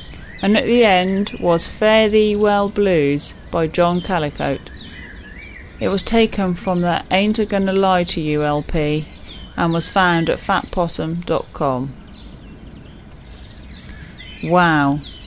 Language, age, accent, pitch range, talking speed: English, 30-49, British, 145-185 Hz, 120 wpm